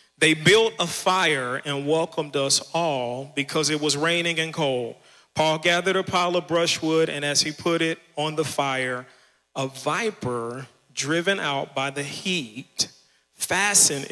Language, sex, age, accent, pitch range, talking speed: English, male, 40-59, American, 150-190 Hz, 155 wpm